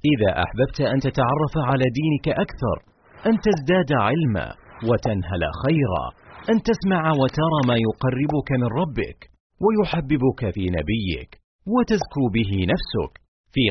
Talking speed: 115 wpm